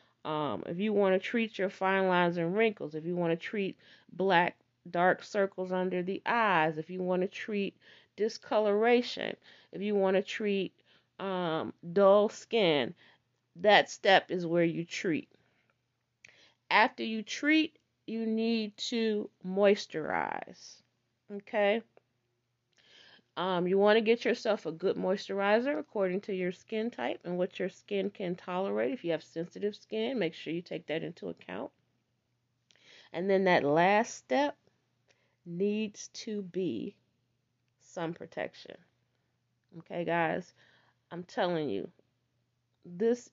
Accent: American